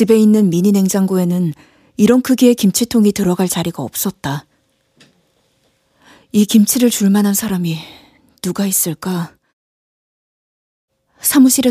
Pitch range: 160-215 Hz